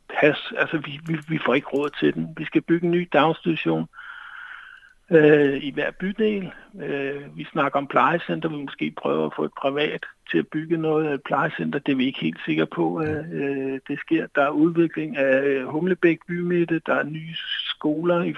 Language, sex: Danish, male